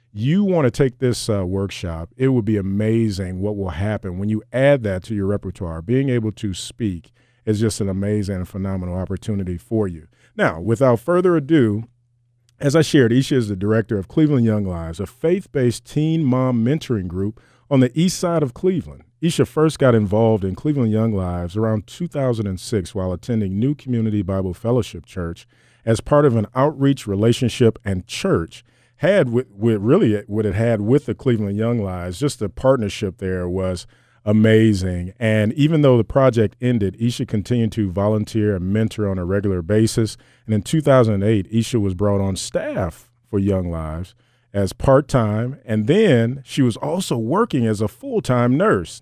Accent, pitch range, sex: American, 100-130 Hz, male